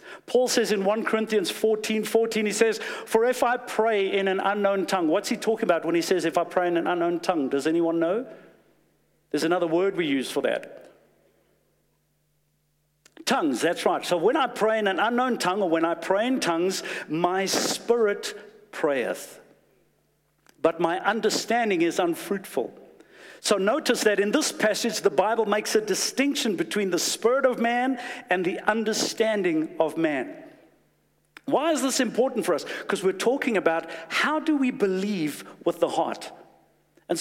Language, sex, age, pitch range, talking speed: English, male, 60-79, 180-250 Hz, 170 wpm